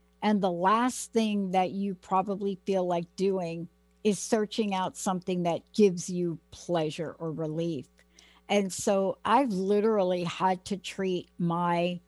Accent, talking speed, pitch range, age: American, 140 wpm, 175-210 Hz, 60-79